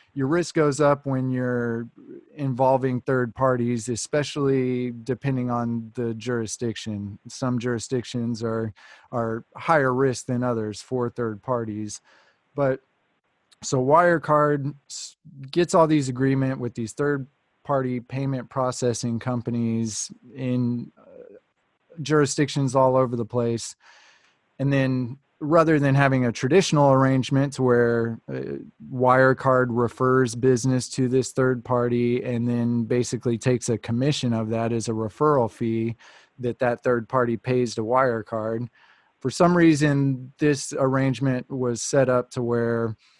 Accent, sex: American, male